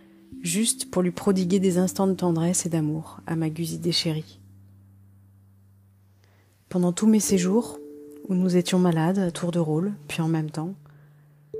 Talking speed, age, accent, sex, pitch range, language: 155 wpm, 40-59, French, female, 145-190 Hz, French